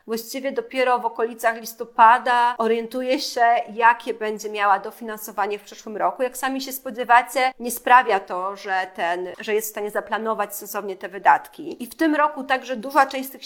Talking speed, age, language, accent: 180 wpm, 30-49, Polish, native